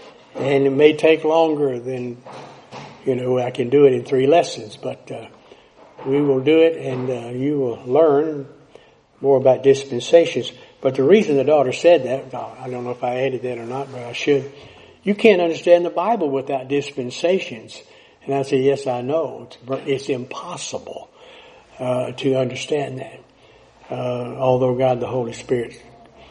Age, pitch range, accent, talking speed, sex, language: 60-79, 130-150 Hz, American, 170 wpm, male, English